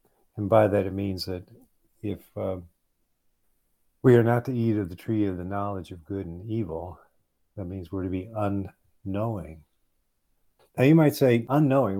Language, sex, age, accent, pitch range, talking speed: English, male, 50-69, American, 85-110 Hz, 170 wpm